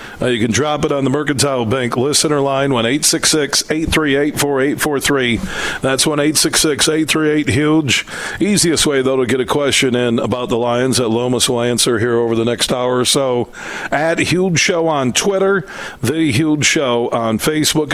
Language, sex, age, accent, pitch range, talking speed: English, male, 50-69, American, 120-150 Hz, 165 wpm